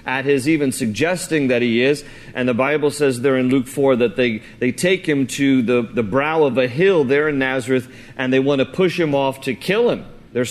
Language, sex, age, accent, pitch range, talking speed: English, male, 40-59, American, 120-145 Hz, 235 wpm